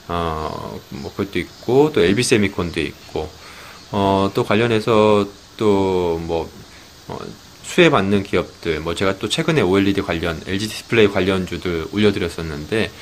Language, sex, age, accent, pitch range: Korean, male, 20-39, native, 85-110 Hz